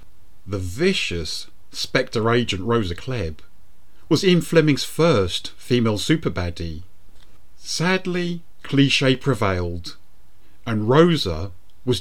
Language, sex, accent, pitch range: English, male, British, 90-125 Hz